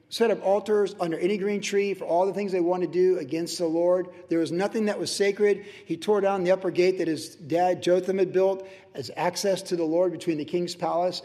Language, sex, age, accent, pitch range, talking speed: English, male, 50-69, American, 165-205 Hz, 240 wpm